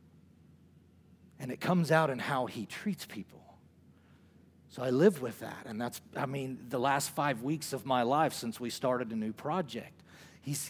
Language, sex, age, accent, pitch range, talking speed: English, male, 40-59, American, 100-160 Hz, 180 wpm